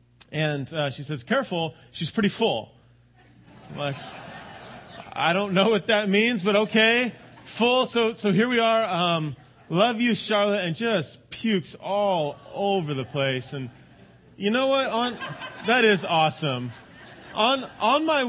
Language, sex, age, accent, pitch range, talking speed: English, male, 30-49, American, 130-210 Hz, 150 wpm